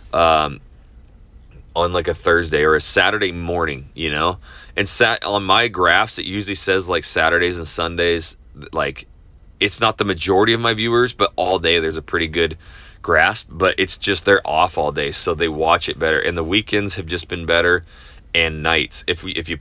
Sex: male